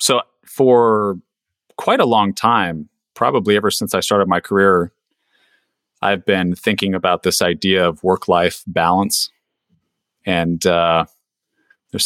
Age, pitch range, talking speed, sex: 30-49, 90-110 Hz, 125 wpm, male